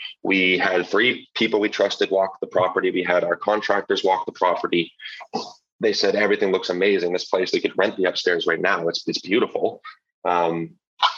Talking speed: 180 wpm